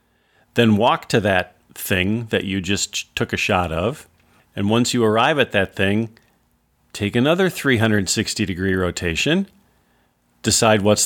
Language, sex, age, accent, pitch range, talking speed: English, male, 40-59, American, 95-125 Hz, 135 wpm